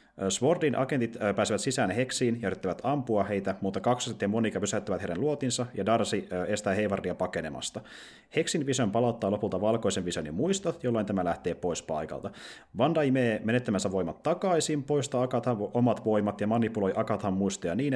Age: 30-49